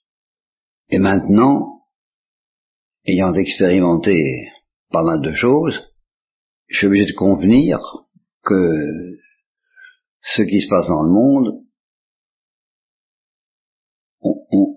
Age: 50-69